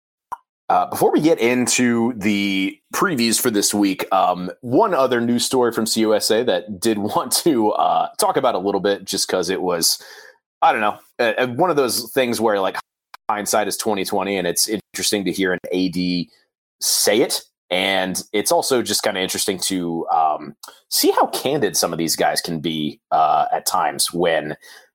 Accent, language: American, English